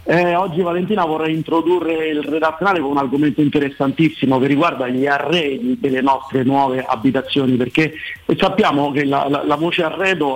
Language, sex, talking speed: Italian, male, 155 wpm